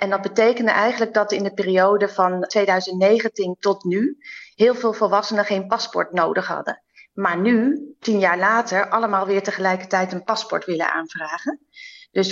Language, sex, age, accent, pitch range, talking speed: Dutch, female, 30-49, Dutch, 190-235 Hz, 155 wpm